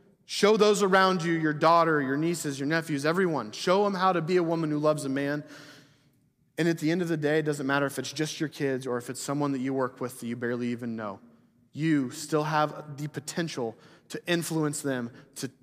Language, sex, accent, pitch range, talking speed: English, male, American, 145-195 Hz, 225 wpm